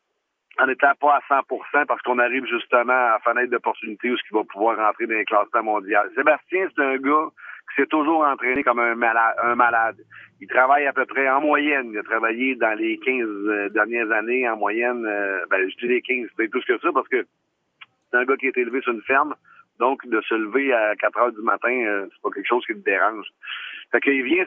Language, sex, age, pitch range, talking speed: French, male, 50-69, 120-150 Hz, 225 wpm